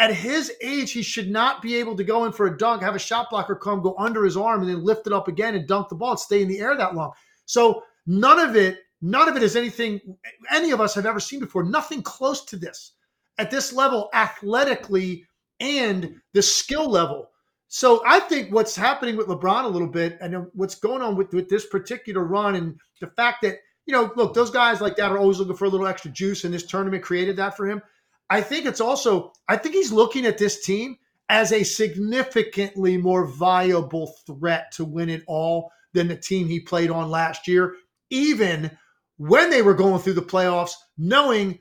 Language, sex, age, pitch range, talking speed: English, male, 40-59, 185-230 Hz, 220 wpm